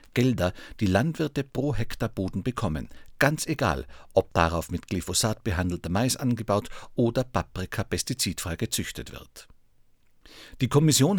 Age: 50-69